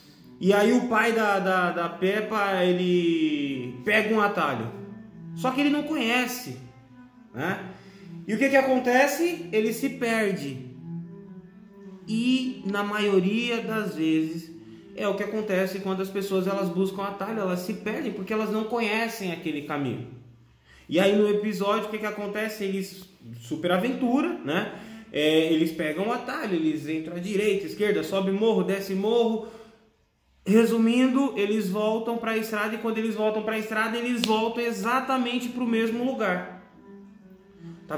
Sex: male